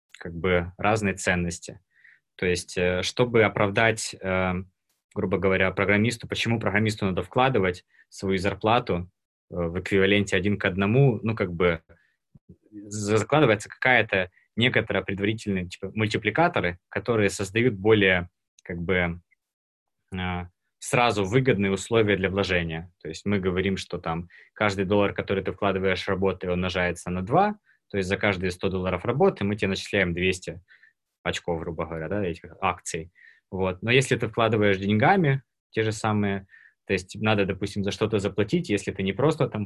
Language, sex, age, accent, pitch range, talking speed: Russian, male, 20-39, native, 90-105 Hz, 140 wpm